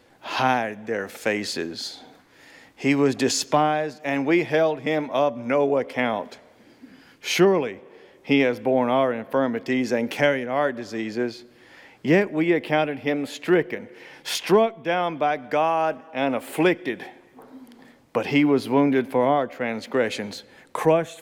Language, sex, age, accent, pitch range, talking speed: English, male, 40-59, American, 125-155 Hz, 120 wpm